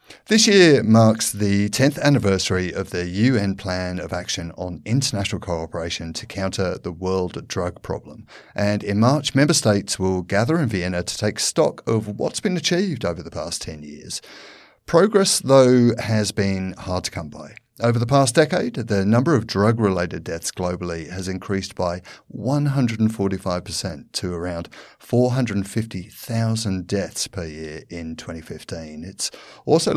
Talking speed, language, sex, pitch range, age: 150 wpm, English, male, 90-120 Hz, 50-69